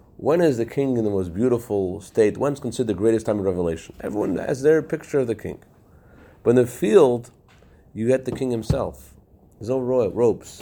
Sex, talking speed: male, 205 wpm